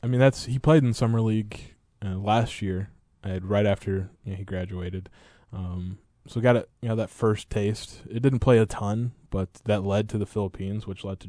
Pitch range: 95-115 Hz